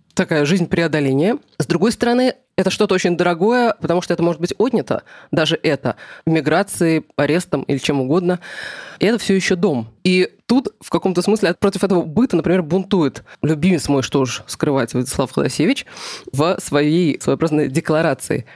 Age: 20-39